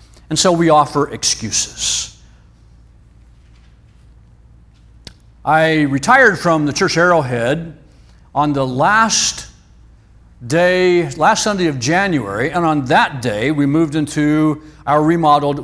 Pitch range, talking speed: 130-160 Hz, 105 wpm